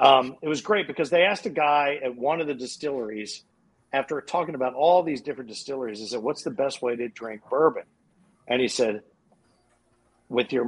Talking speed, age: 195 wpm, 50-69